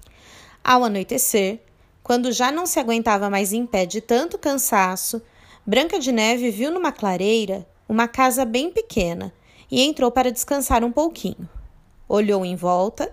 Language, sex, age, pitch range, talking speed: Portuguese, female, 20-39, 200-275 Hz, 145 wpm